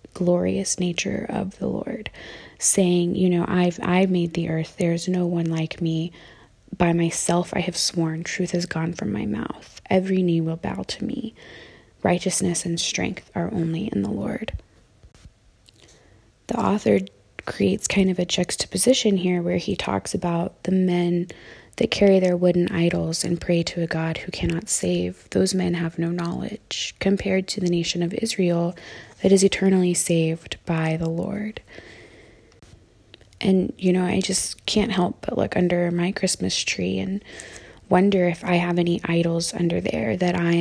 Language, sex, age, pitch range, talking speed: English, female, 20-39, 165-190 Hz, 165 wpm